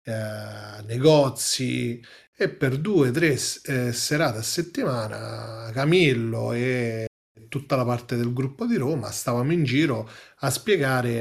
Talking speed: 130 wpm